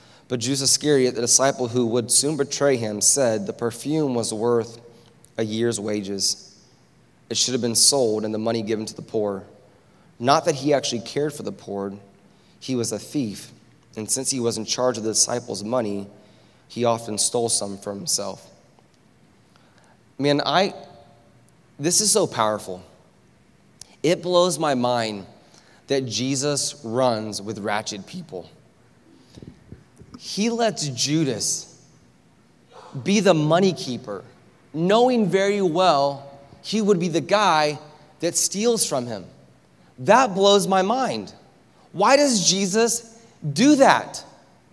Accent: American